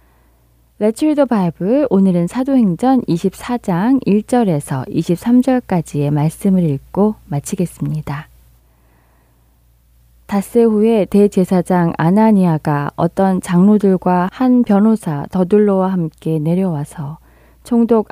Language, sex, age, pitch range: Korean, female, 20-39, 160-205 Hz